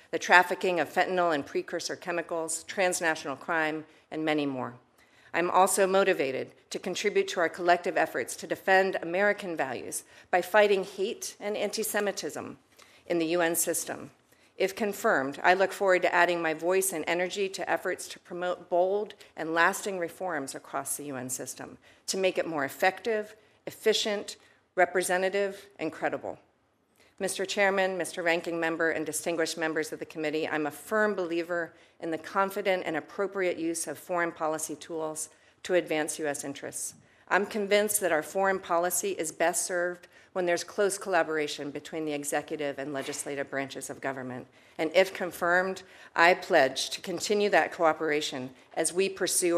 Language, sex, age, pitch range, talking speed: English, female, 50-69, 155-190 Hz, 155 wpm